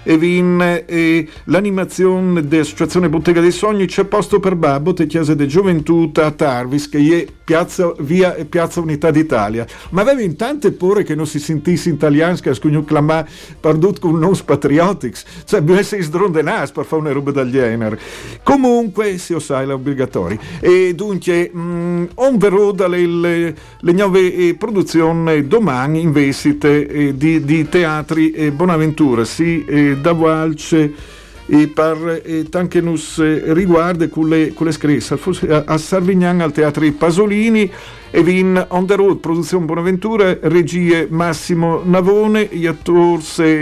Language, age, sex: Italian, 50-69, male